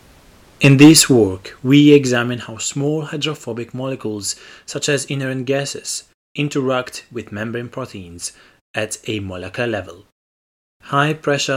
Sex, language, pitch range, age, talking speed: male, English, 105-135 Hz, 30-49, 115 wpm